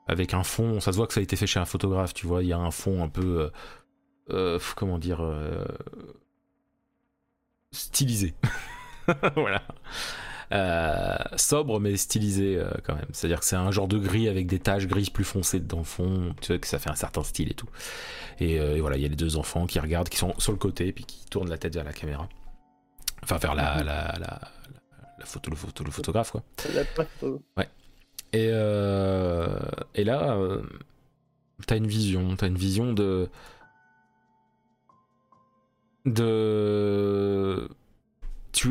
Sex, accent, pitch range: male, French, 90-110 Hz